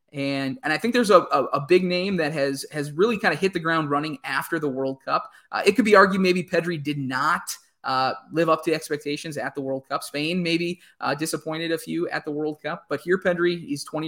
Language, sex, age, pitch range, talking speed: English, male, 20-39, 140-170 Hz, 245 wpm